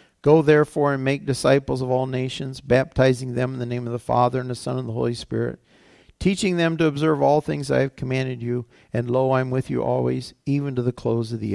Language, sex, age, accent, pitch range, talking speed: English, male, 50-69, American, 125-160 Hz, 240 wpm